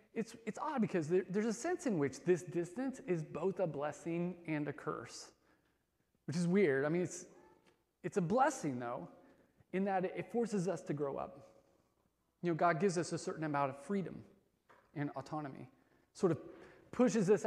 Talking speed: 180 wpm